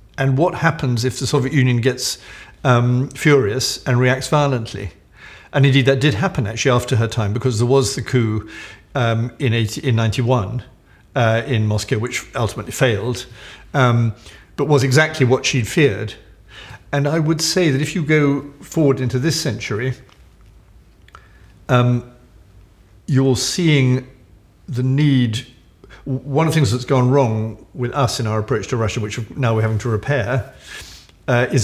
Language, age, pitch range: Swedish, 50-69, 110-135 Hz